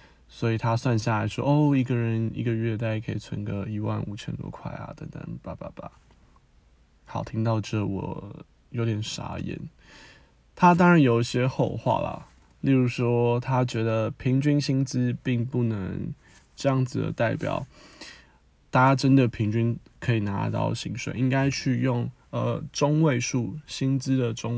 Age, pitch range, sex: 20-39, 105-135 Hz, male